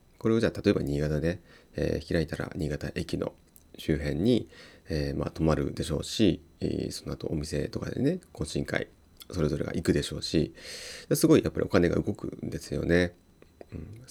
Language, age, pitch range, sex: Japanese, 30-49, 75-95 Hz, male